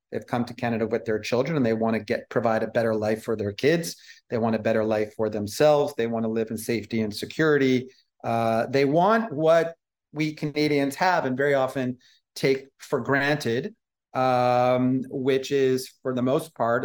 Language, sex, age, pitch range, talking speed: English, male, 40-59, 120-140 Hz, 190 wpm